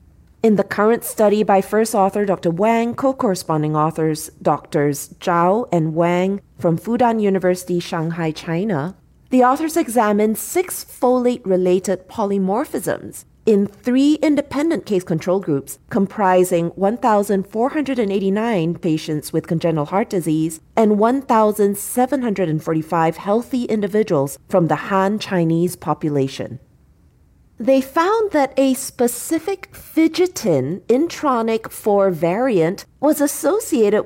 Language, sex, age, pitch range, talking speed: English, female, 40-59, 175-245 Hz, 105 wpm